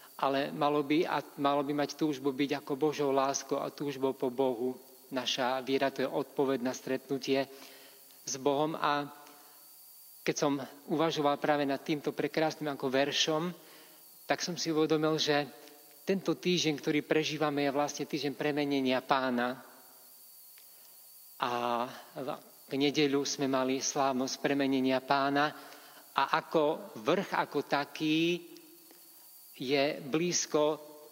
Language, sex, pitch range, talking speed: Slovak, male, 135-155 Hz, 125 wpm